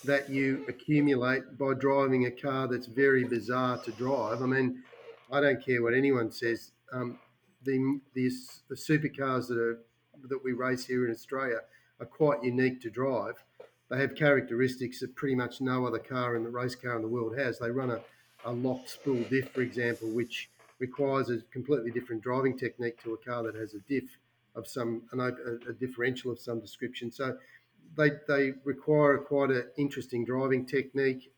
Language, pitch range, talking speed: English, 120-135 Hz, 185 wpm